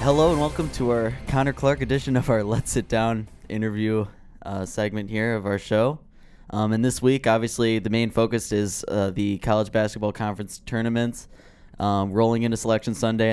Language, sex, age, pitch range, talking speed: English, male, 10-29, 105-115 Hz, 180 wpm